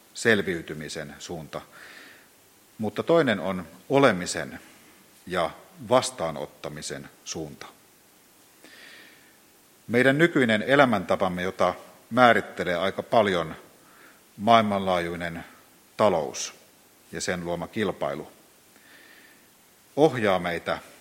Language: Finnish